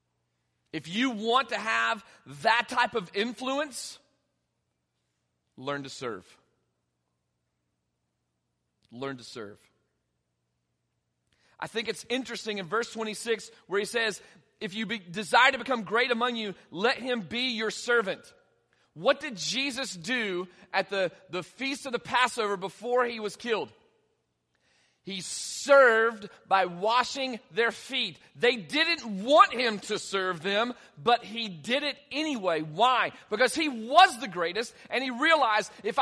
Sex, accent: male, American